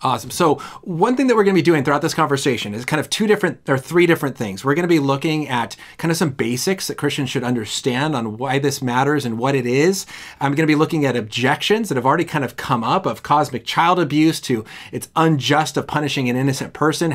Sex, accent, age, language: male, American, 30-49, English